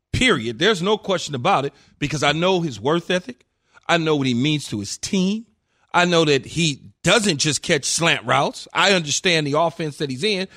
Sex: male